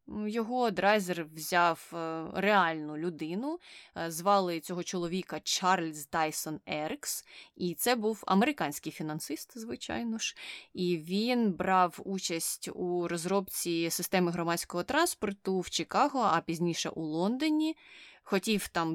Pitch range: 165-210 Hz